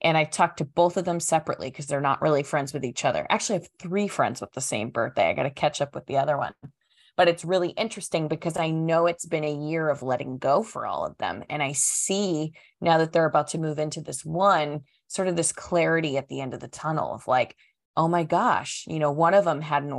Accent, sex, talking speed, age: American, female, 260 wpm, 20-39